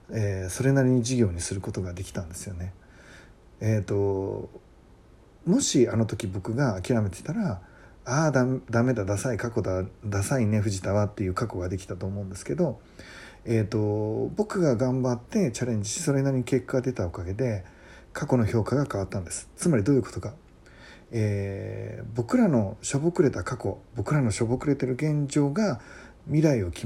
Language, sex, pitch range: Japanese, male, 100-140 Hz